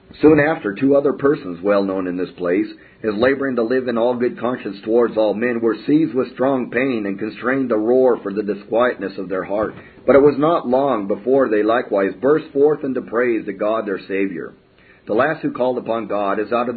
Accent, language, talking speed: American, English, 220 wpm